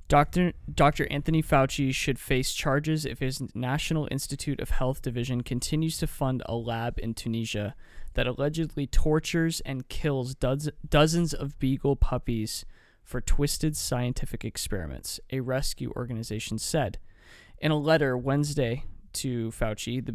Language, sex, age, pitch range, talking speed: English, male, 20-39, 115-140 Hz, 135 wpm